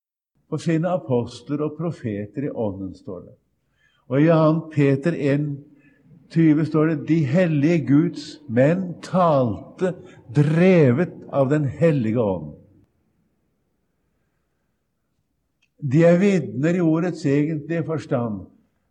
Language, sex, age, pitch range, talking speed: English, male, 50-69, 130-165 Hz, 110 wpm